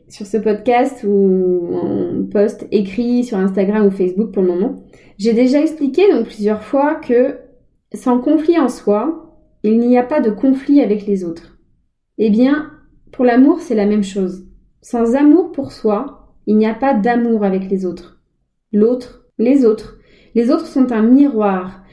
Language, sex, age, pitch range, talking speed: French, female, 20-39, 205-255 Hz, 170 wpm